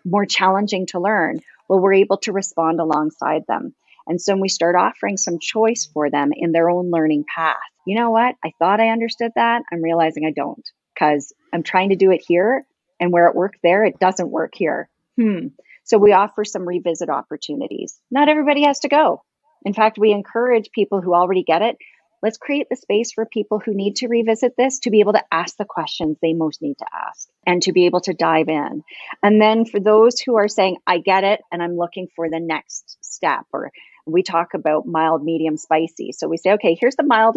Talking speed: 215 wpm